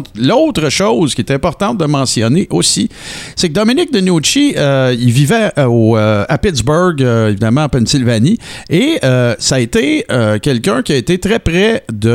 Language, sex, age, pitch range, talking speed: French, male, 50-69, 115-165 Hz, 185 wpm